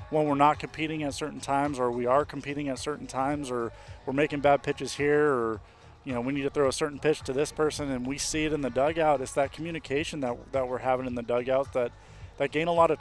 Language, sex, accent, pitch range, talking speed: English, male, American, 120-150 Hz, 260 wpm